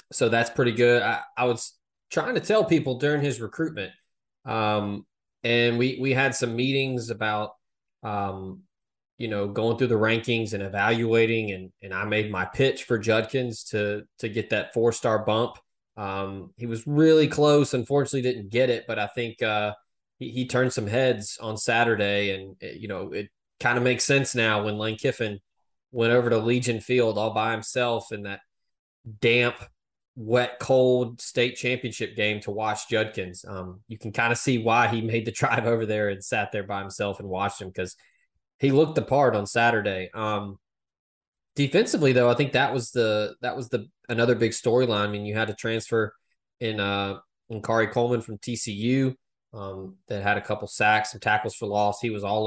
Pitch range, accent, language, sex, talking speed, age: 105-120 Hz, American, English, male, 190 wpm, 20-39